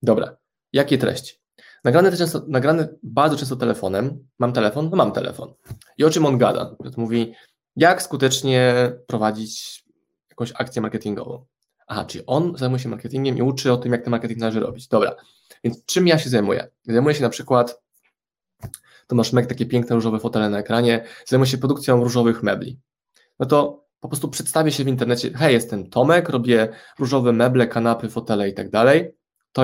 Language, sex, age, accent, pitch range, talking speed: Polish, male, 20-39, native, 110-130 Hz, 170 wpm